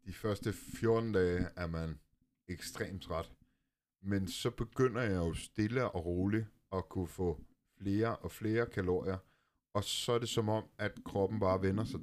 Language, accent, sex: Danish, native, male